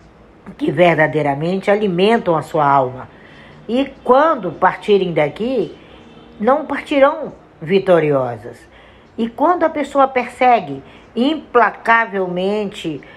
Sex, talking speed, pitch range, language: female, 85 wpm, 150-220 Hz, Portuguese